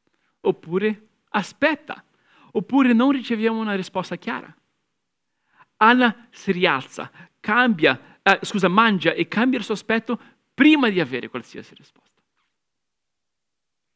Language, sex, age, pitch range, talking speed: Italian, male, 50-69, 180-245 Hz, 110 wpm